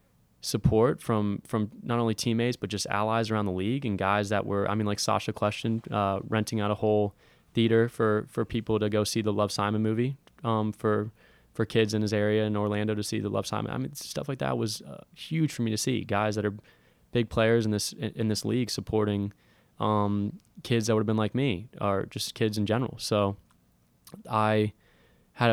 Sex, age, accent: male, 20-39, American